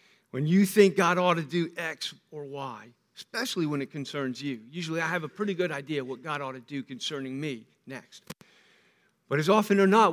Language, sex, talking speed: English, male, 205 wpm